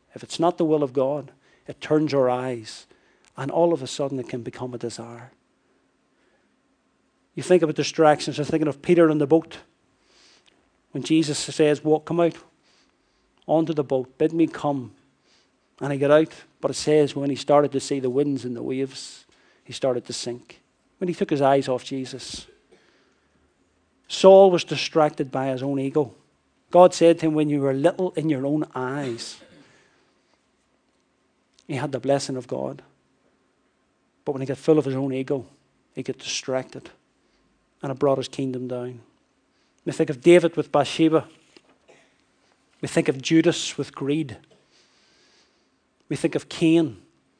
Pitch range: 130-160 Hz